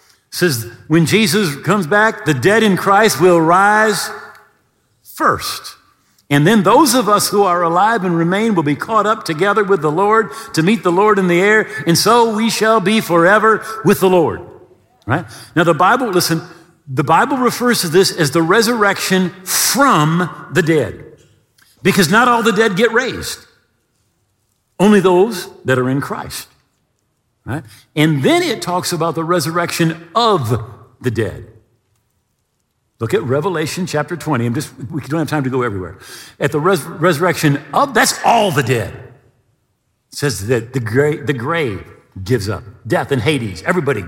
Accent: American